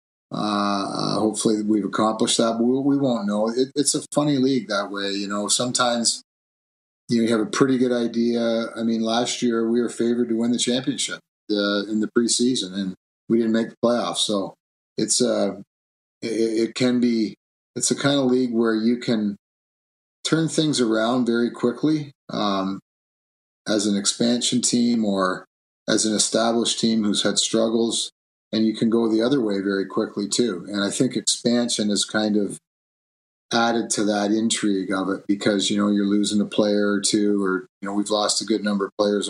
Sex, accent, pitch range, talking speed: male, American, 100-120 Hz, 185 wpm